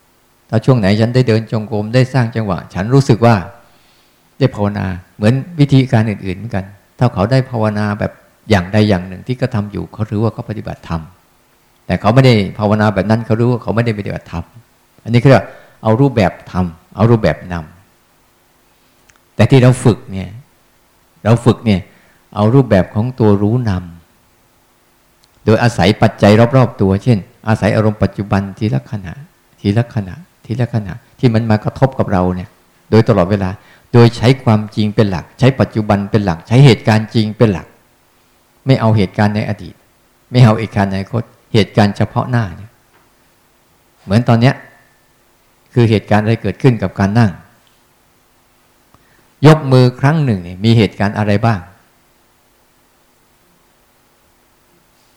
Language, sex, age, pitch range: Thai, male, 50-69, 100-120 Hz